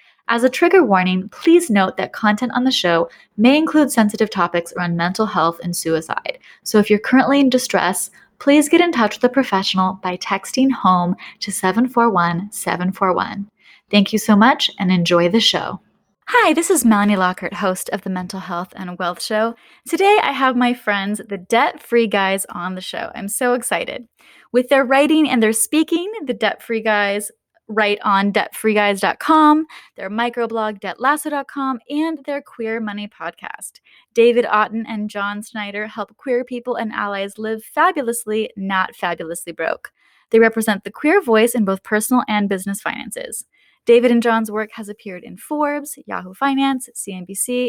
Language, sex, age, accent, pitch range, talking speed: English, female, 20-39, American, 195-250 Hz, 165 wpm